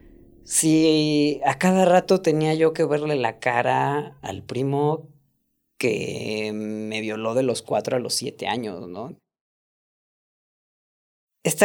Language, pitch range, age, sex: Spanish, 115-155 Hz, 30-49, female